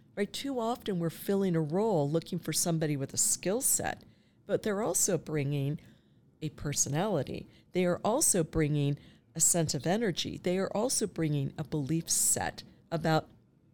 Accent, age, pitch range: American, 50-69, 155-210 Hz